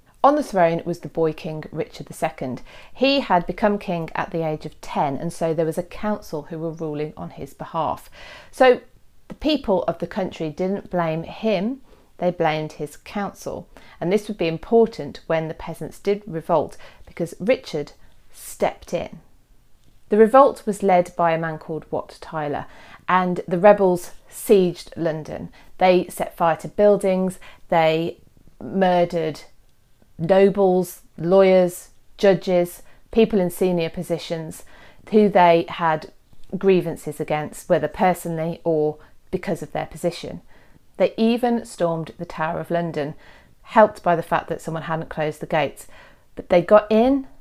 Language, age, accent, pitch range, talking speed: English, 40-59, British, 165-195 Hz, 150 wpm